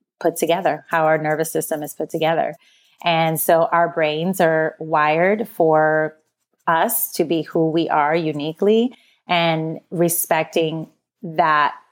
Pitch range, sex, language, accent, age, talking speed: 160-180 Hz, female, English, American, 30-49, 130 wpm